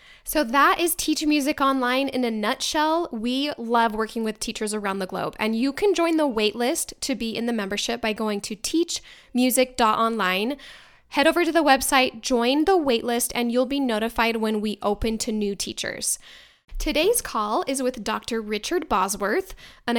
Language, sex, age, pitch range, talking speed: English, female, 10-29, 215-270 Hz, 175 wpm